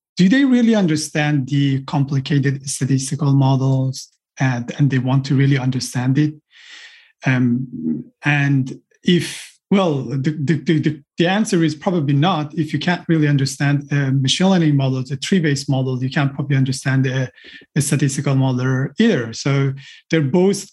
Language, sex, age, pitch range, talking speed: English, male, 30-49, 140-185 Hz, 150 wpm